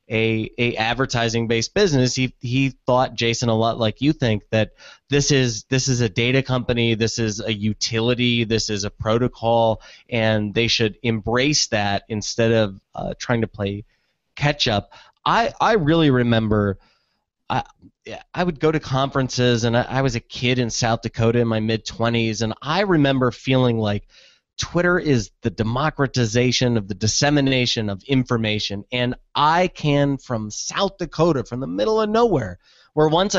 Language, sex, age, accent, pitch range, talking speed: English, male, 20-39, American, 115-140 Hz, 165 wpm